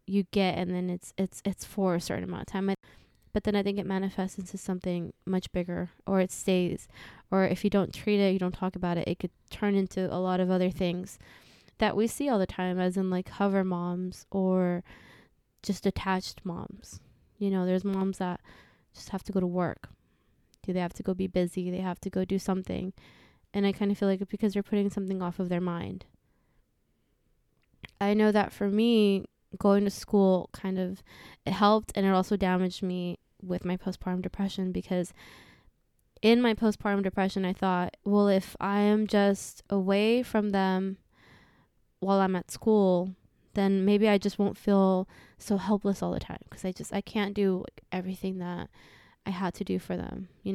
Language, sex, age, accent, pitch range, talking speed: English, female, 20-39, American, 185-200 Hz, 195 wpm